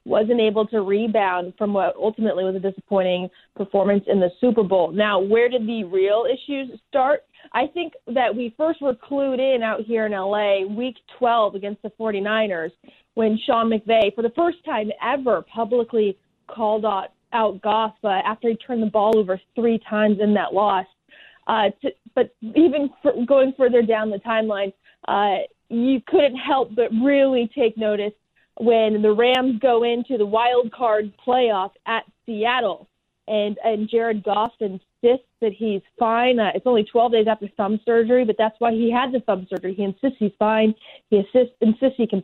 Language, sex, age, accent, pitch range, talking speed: English, female, 30-49, American, 205-240 Hz, 175 wpm